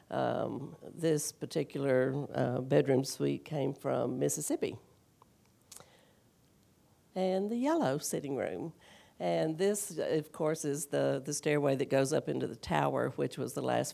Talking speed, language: 140 wpm, English